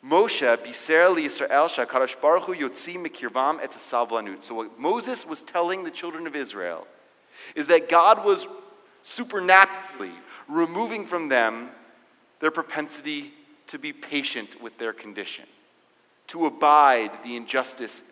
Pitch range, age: 130-200 Hz, 30-49